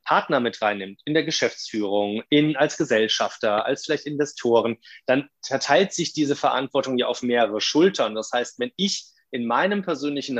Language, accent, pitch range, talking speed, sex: German, German, 125-150 Hz, 160 wpm, male